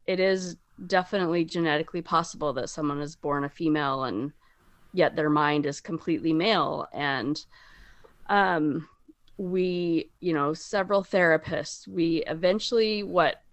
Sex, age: female, 30-49